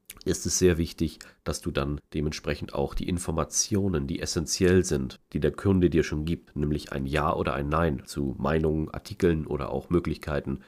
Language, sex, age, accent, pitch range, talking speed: German, male, 40-59, German, 75-95 Hz, 180 wpm